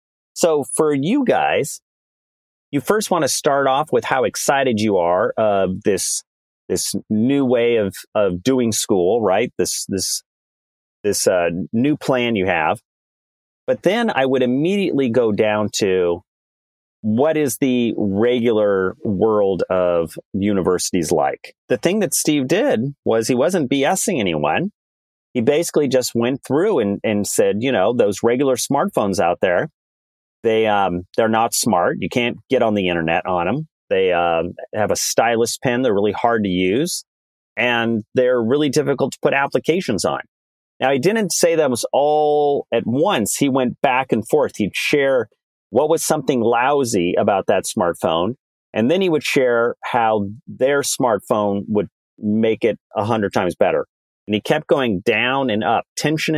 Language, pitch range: English, 100-140 Hz